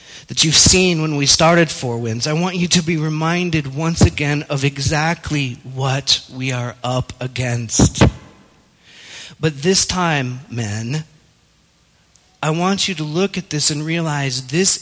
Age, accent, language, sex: 40-59, American, English, male